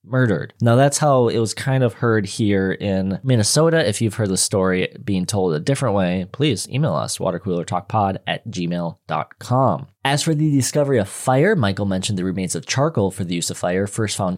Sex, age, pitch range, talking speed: male, 20-39, 95-135 Hz, 195 wpm